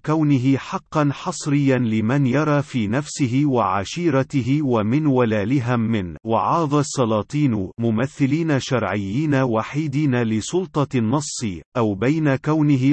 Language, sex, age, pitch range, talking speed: Arabic, male, 40-59, 115-150 Hz, 100 wpm